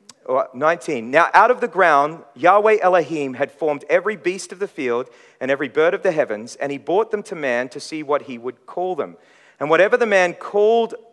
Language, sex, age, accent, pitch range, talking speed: English, male, 40-59, Australian, 135-180 Hz, 210 wpm